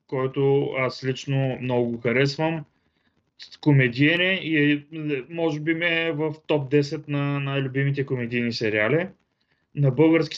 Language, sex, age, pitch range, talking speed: Bulgarian, male, 20-39, 140-160 Hz, 125 wpm